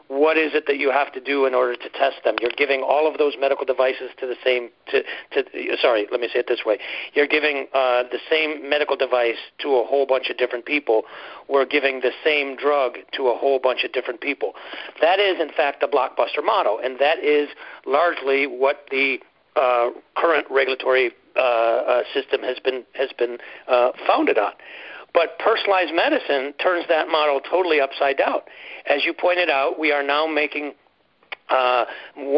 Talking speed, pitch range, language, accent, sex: 190 wpm, 130-155 Hz, English, American, male